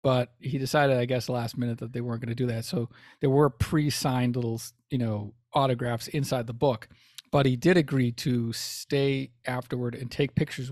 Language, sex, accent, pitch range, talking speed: English, male, American, 120-150 Hz, 195 wpm